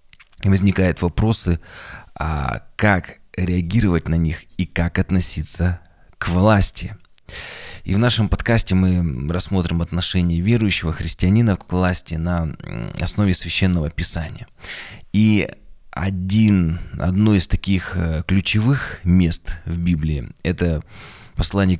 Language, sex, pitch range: Russian, male, 85-100 Hz